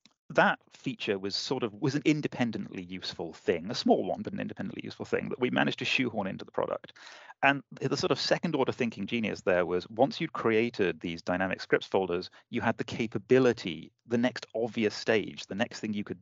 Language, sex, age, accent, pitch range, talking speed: English, male, 30-49, British, 90-115 Hz, 205 wpm